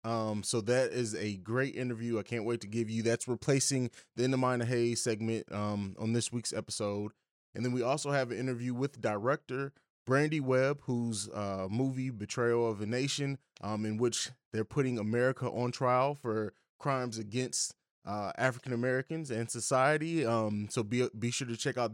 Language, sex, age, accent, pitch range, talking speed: English, male, 20-39, American, 110-135 Hz, 190 wpm